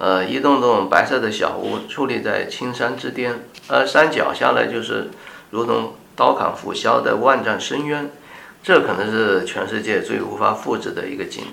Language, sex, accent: Chinese, male, native